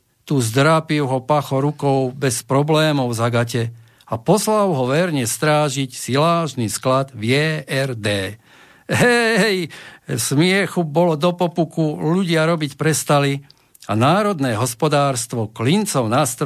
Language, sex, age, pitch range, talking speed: Slovak, male, 50-69, 125-160 Hz, 115 wpm